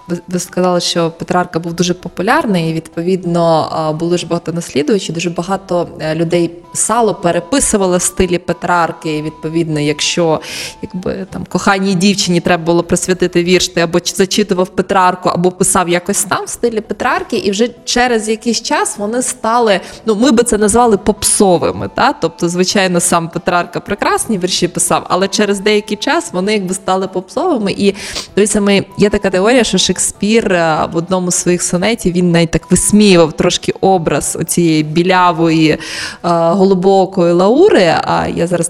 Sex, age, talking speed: female, 20-39, 145 wpm